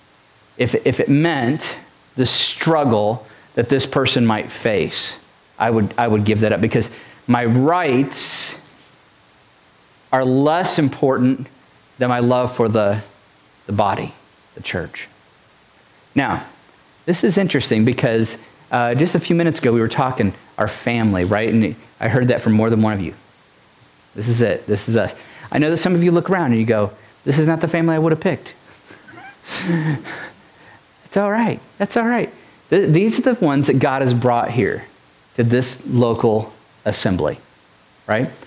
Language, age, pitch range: English, 40-59, 110-140 Hz